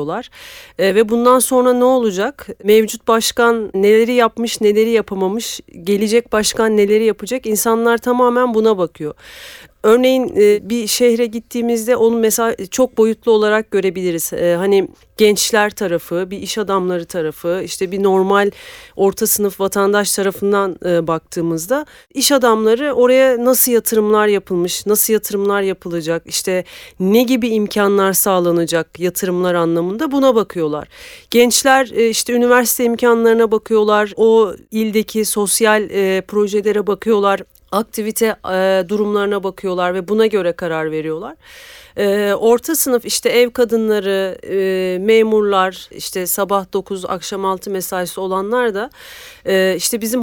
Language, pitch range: Turkish, 190-230 Hz